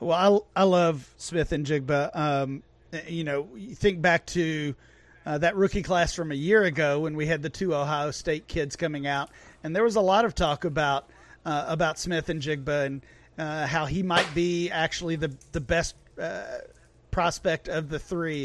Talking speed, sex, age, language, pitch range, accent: 195 wpm, male, 40-59, English, 145-175 Hz, American